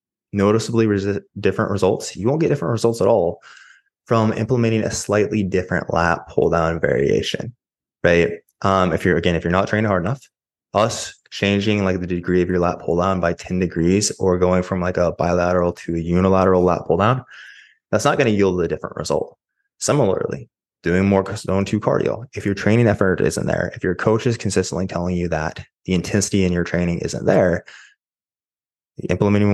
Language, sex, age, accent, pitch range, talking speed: English, male, 20-39, American, 90-105 Hz, 180 wpm